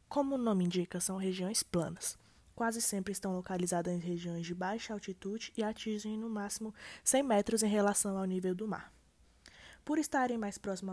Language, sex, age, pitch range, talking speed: Portuguese, female, 20-39, 185-230 Hz, 175 wpm